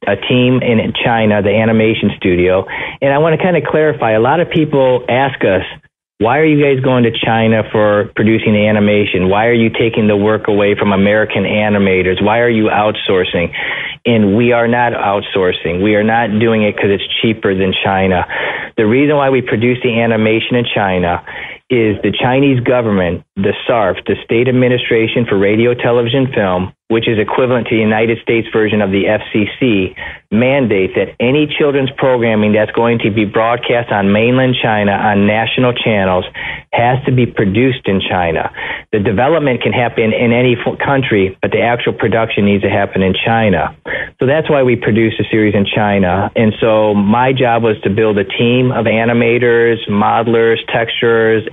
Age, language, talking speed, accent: 40-59, English, 180 wpm, American